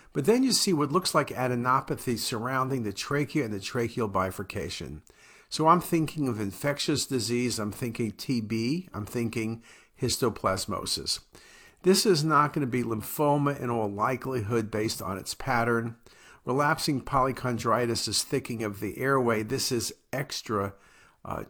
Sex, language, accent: male, English, American